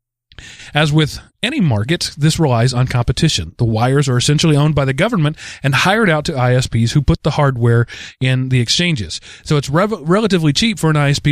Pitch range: 120-155 Hz